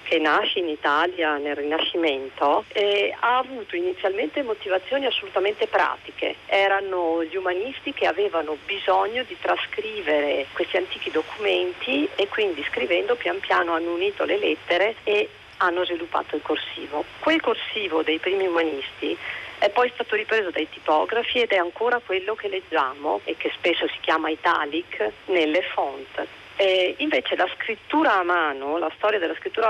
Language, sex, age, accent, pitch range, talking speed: Italian, female, 40-59, native, 165-275 Hz, 145 wpm